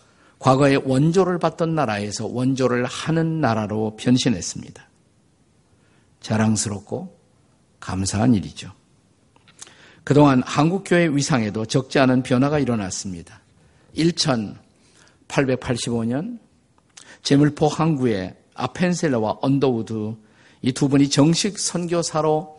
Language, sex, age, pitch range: Korean, male, 50-69, 120-155 Hz